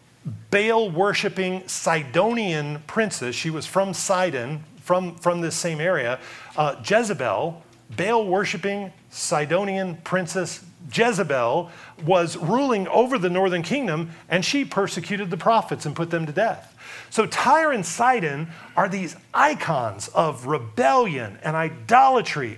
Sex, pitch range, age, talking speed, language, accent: male, 160-210 Hz, 40-59, 120 wpm, English, American